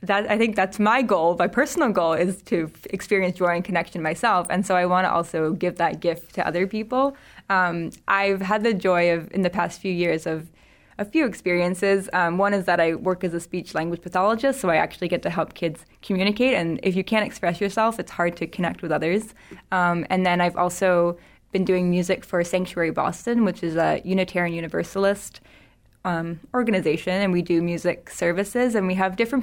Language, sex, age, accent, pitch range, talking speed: English, female, 20-39, American, 170-195 Hz, 205 wpm